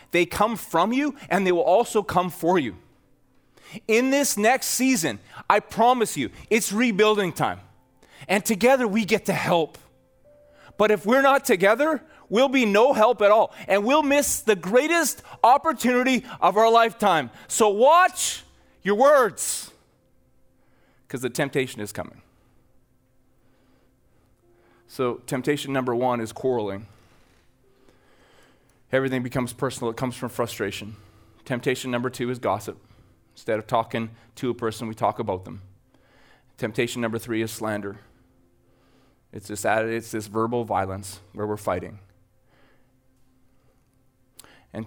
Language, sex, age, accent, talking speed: English, male, 30-49, American, 135 wpm